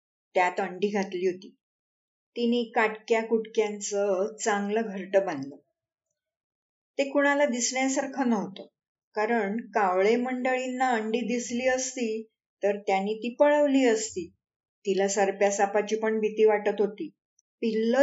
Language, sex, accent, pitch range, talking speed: Marathi, female, native, 200-245 Hz, 105 wpm